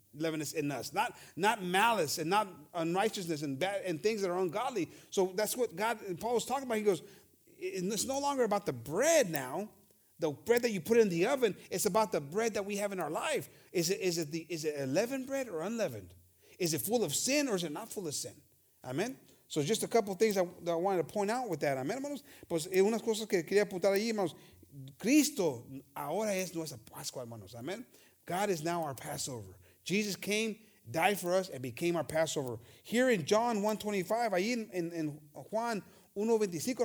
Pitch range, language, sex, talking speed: 160-220 Hz, English, male, 205 wpm